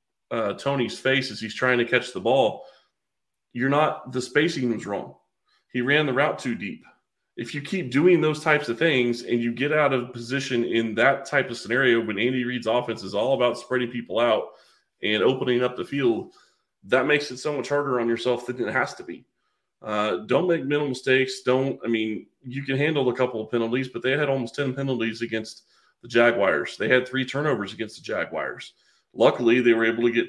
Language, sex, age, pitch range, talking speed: English, male, 30-49, 115-130 Hz, 210 wpm